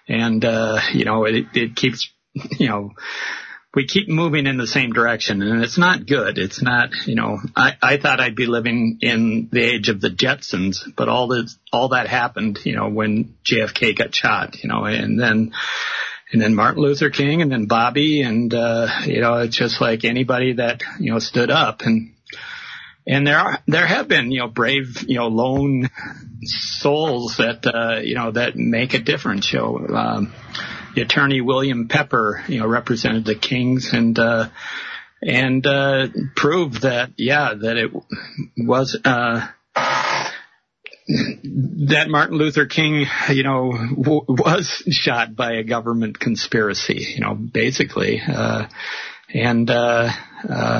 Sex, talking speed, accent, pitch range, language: male, 160 wpm, American, 115-135 Hz, English